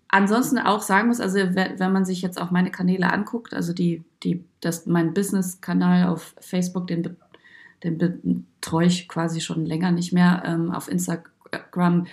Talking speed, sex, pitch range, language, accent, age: 160 wpm, female, 175-205 Hz, German, German, 30-49